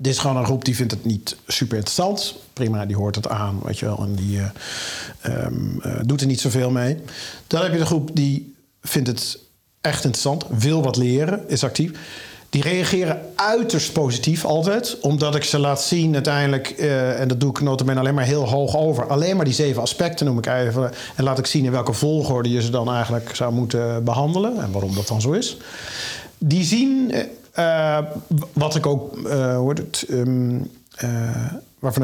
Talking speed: 195 wpm